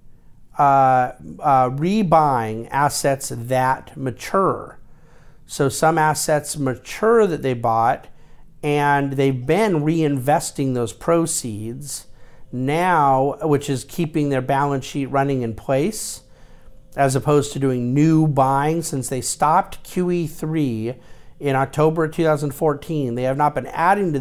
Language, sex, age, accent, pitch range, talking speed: English, male, 50-69, American, 130-155 Hz, 120 wpm